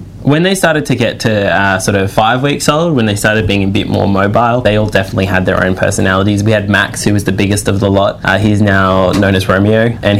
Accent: Australian